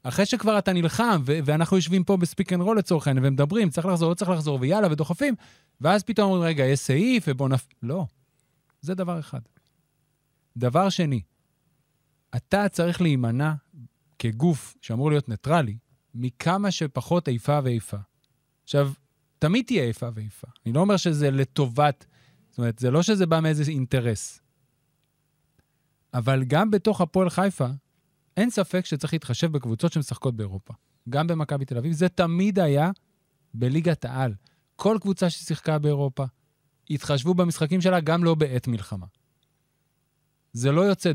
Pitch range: 130-175 Hz